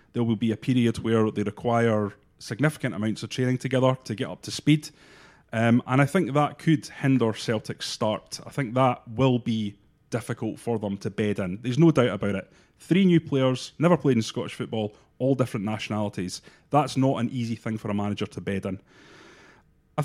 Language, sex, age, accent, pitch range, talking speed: English, male, 30-49, British, 110-145 Hz, 200 wpm